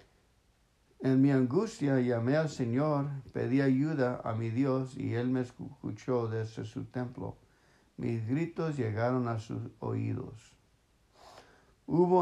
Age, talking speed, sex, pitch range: 60-79, 125 wpm, male, 120-140 Hz